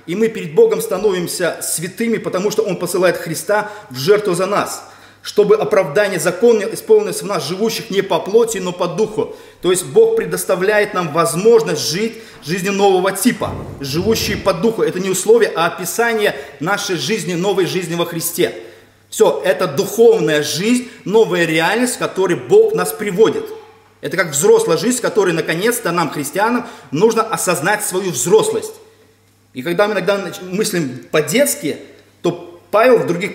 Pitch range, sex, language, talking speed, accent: 150-220 Hz, male, Russian, 155 wpm, native